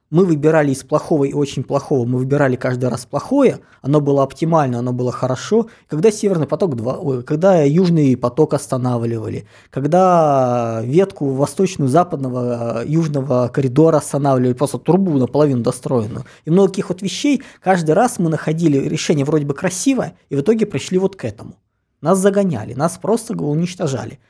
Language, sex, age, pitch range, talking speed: Russian, male, 20-39, 130-185 Hz, 150 wpm